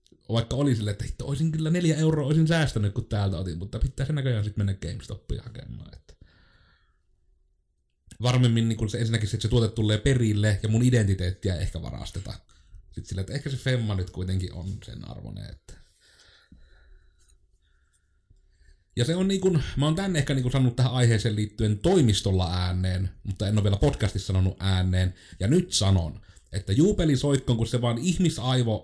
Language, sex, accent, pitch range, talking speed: Finnish, male, native, 95-130 Hz, 160 wpm